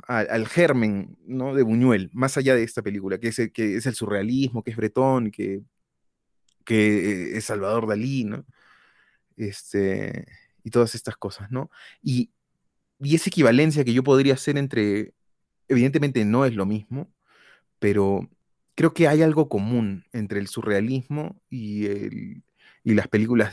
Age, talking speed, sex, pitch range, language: 30-49, 145 wpm, male, 105-140 Hz, Spanish